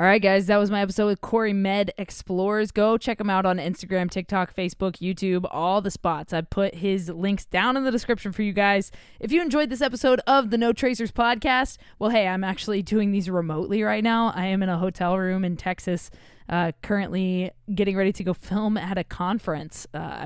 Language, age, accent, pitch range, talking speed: English, 20-39, American, 180-225 Hz, 215 wpm